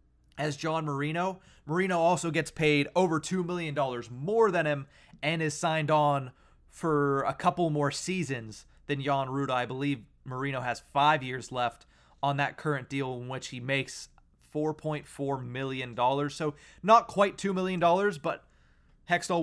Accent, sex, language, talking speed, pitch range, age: American, male, English, 150 wpm, 135-170 Hz, 30-49